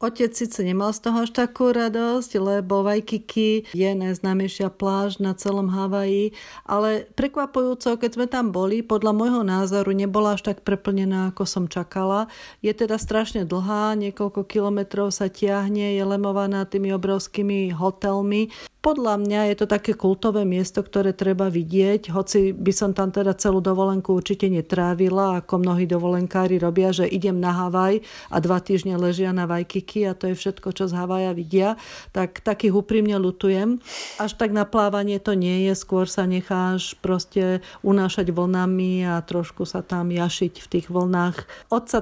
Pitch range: 185-210 Hz